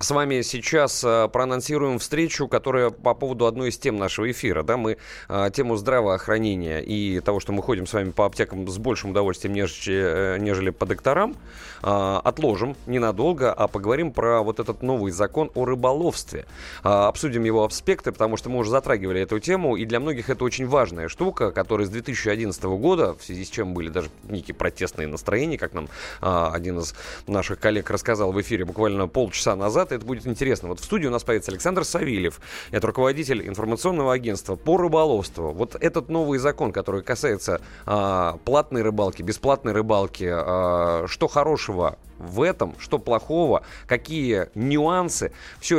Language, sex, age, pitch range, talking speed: Russian, male, 20-39, 95-130 Hz, 160 wpm